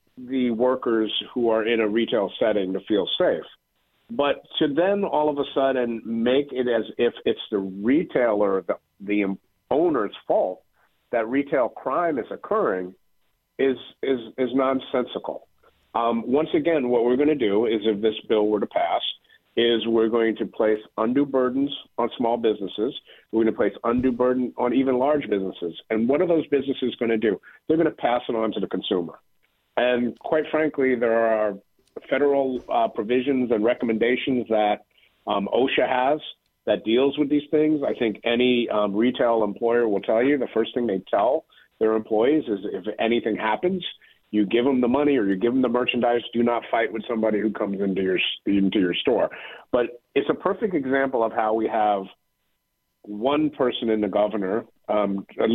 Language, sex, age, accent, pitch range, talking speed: English, male, 50-69, American, 110-130 Hz, 180 wpm